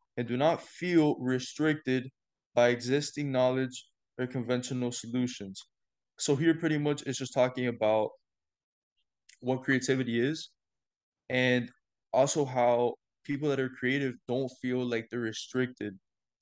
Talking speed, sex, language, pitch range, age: 125 wpm, male, English, 120-135 Hz, 20-39